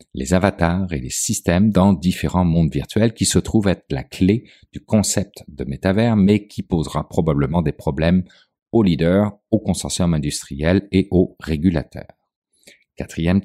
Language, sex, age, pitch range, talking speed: French, male, 50-69, 80-105 Hz, 150 wpm